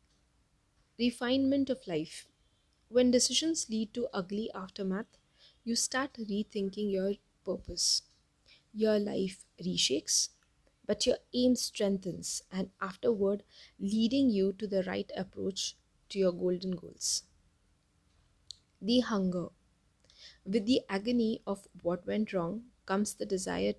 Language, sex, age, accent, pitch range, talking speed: English, female, 20-39, Indian, 180-225 Hz, 115 wpm